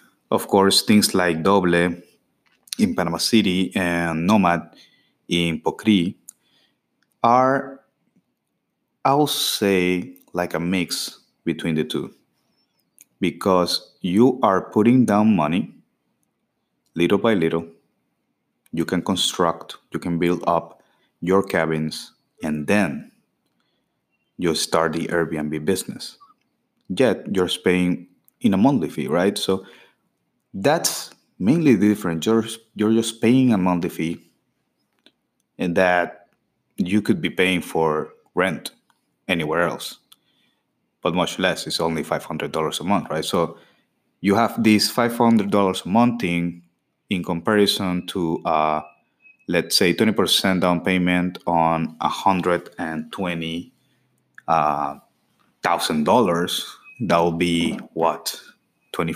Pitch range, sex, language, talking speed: 85-105 Hz, male, English, 120 wpm